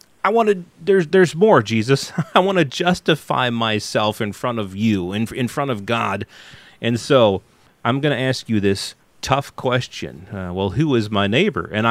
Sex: male